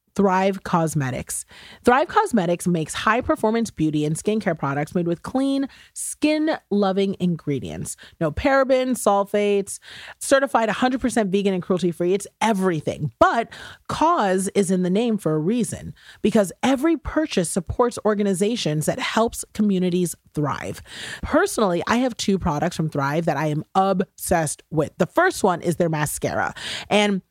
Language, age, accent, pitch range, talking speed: English, 30-49, American, 165-220 Hz, 135 wpm